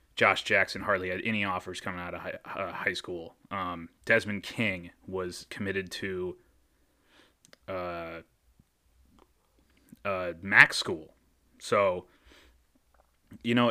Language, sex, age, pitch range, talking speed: English, male, 30-49, 90-120 Hz, 115 wpm